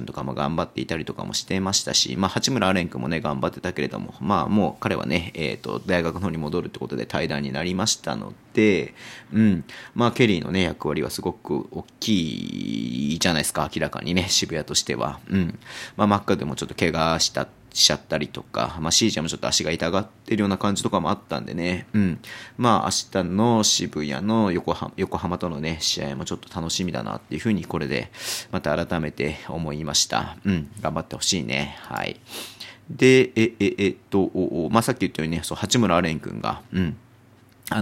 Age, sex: 30-49, male